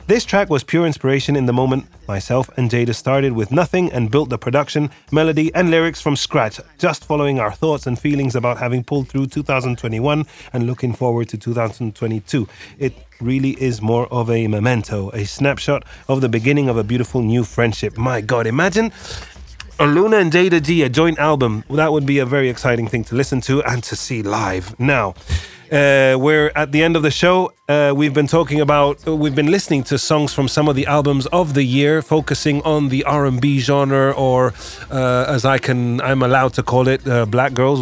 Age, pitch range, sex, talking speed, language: 30-49, 120-150 Hz, male, 200 wpm, English